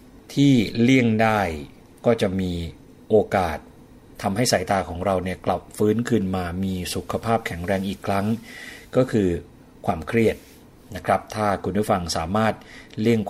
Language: Thai